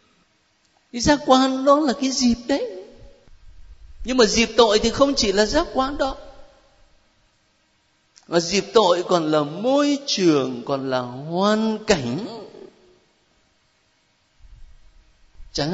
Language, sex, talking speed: Vietnamese, male, 120 wpm